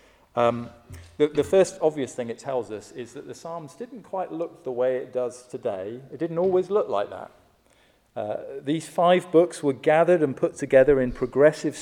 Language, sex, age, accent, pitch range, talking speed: English, male, 40-59, British, 115-155 Hz, 190 wpm